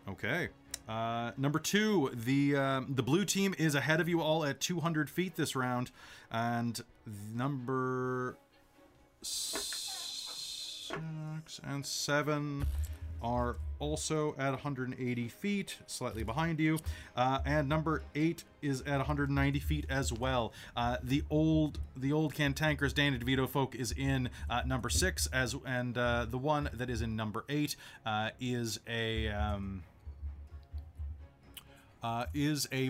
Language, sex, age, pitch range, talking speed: English, male, 30-49, 110-145 Hz, 150 wpm